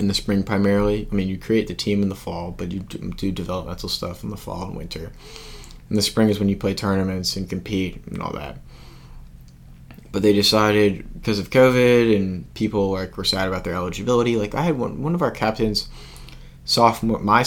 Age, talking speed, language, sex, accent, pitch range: 20-39, 205 wpm, English, male, American, 90-110 Hz